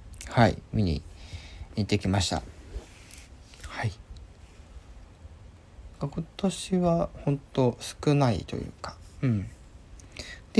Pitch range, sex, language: 85-120 Hz, male, Japanese